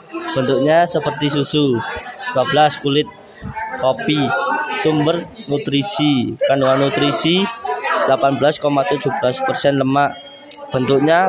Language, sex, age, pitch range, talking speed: Indonesian, male, 20-39, 135-160 Hz, 70 wpm